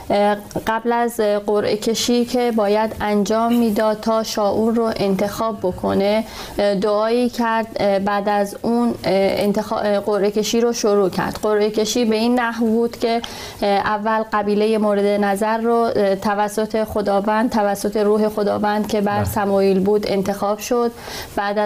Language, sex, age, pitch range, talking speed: Persian, female, 30-49, 205-235 Hz, 135 wpm